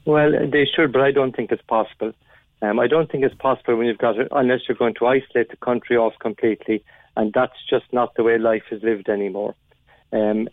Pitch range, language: 110-130 Hz, English